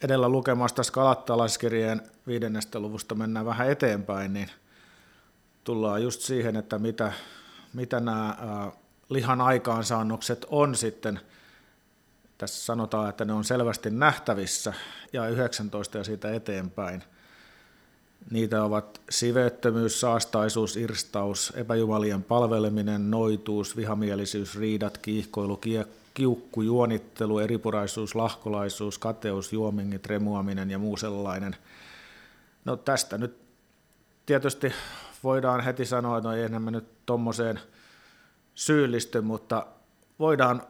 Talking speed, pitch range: 100 wpm, 105-125 Hz